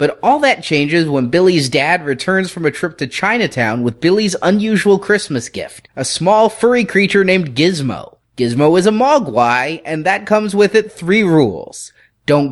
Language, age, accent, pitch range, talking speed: English, 30-49, American, 135-180 Hz, 175 wpm